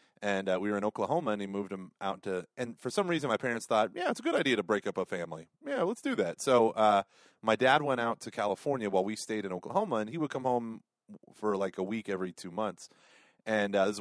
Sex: male